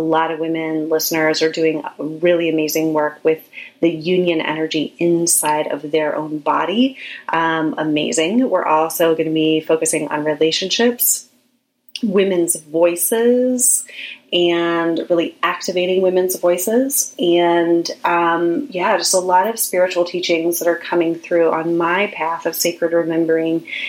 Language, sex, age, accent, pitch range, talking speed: English, female, 30-49, American, 160-180 Hz, 140 wpm